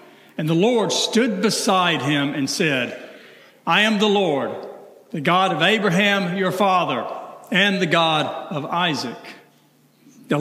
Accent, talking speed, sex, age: American, 140 wpm, male, 60-79